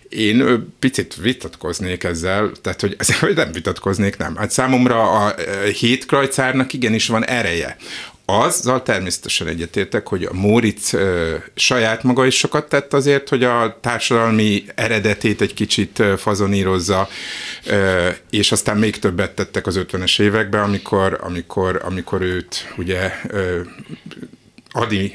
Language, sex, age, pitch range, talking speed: Hungarian, male, 50-69, 90-110 Hz, 125 wpm